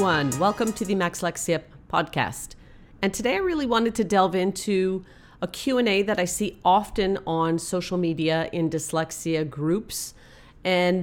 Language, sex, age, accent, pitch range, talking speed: English, female, 40-59, American, 165-210 Hz, 140 wpm